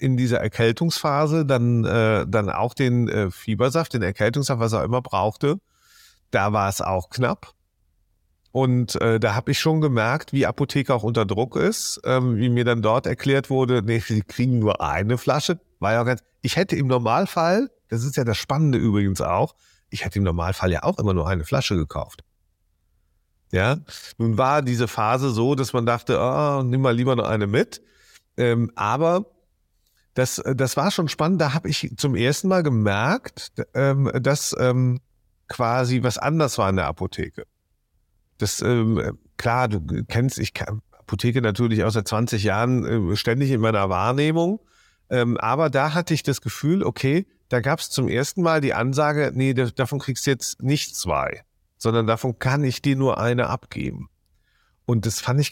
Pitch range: 105-140 Hz